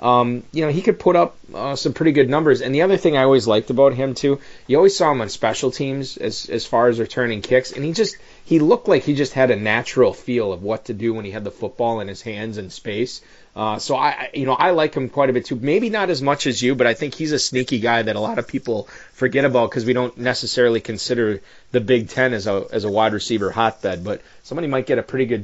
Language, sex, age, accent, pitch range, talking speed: English, male, 30-49, American, 110-130 Hz, 270 wpm